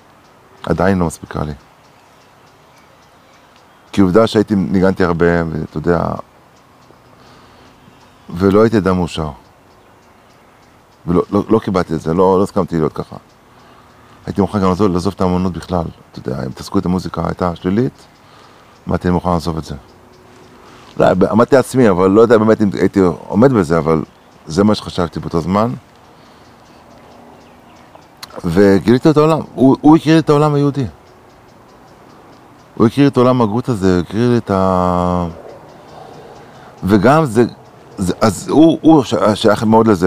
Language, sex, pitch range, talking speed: Hebrew, male, 90-115 Hz, 140 wpm